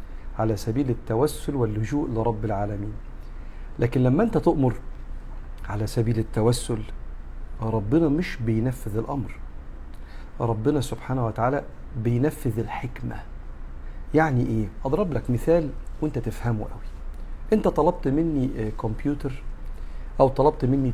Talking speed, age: 105 wpm, 50-69